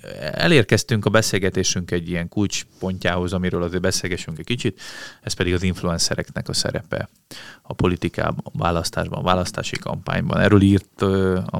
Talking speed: 140 wpm